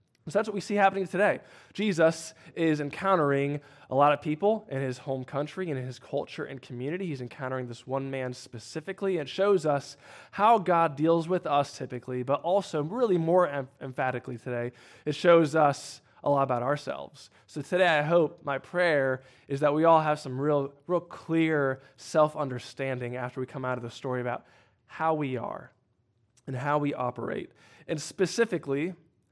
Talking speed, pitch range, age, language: 175 wpm, 130-160 Hz, 20-39, English